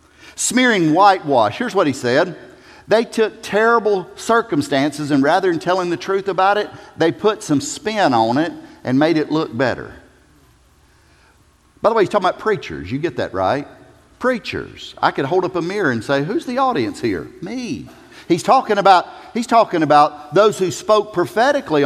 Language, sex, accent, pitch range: English, male, American, 155-250 Hz